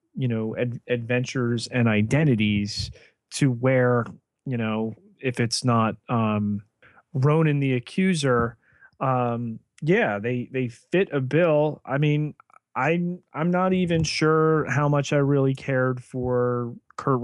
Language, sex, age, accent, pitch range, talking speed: English, male, 30-49, American, 115-135 Hz, 130 wpm